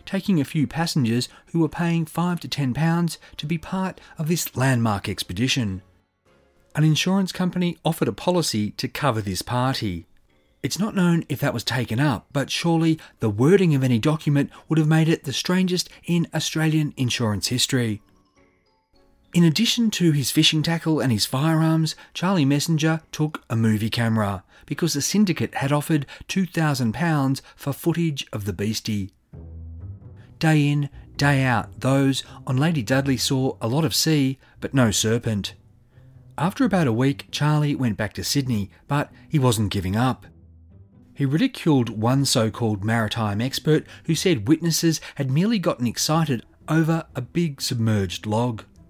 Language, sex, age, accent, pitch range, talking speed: English, male, 40-59, Australian, 110-160 Hz, 155 wpm